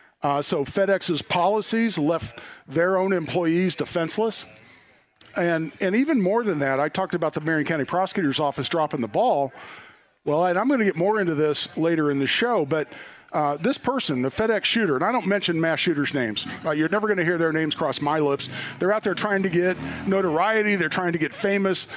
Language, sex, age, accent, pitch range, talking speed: English, male, 50-69, American, 155-205 Hz, 210 wpm